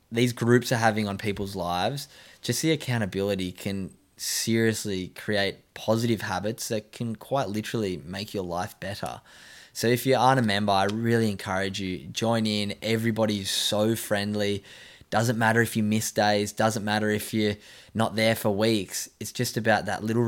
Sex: male